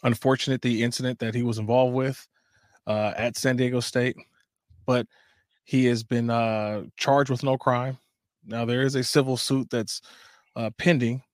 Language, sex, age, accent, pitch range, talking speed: English, male, 20-39, American, 120-135 Hz, 165 wpm